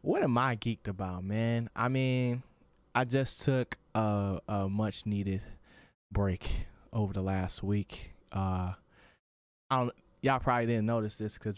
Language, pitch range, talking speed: English, 100-120 Hz, 150 wpm